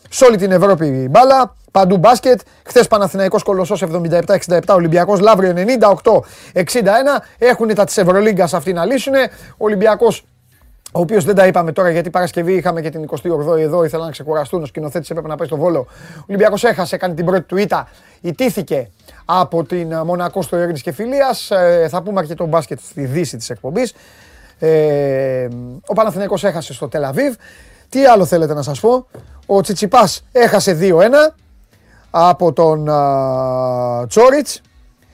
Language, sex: Greek, male